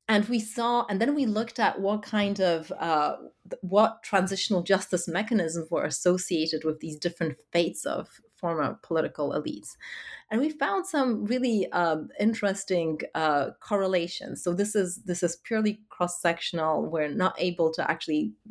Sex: female